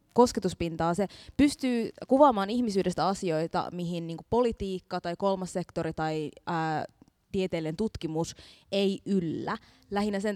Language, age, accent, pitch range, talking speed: Finnish, 20-39, native, 170-200 Hz, 115 wpm